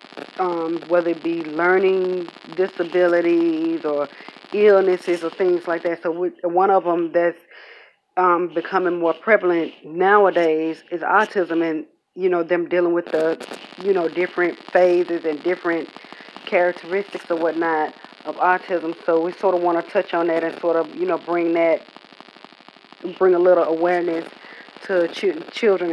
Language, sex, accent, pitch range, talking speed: English, female, American, 170-190 Hz, 155 wpm